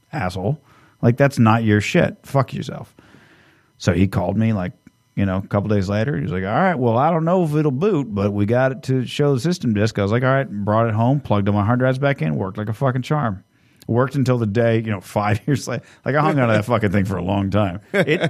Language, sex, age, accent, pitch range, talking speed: English, male, 40-59, American, 95-125 Hz, 265 wpm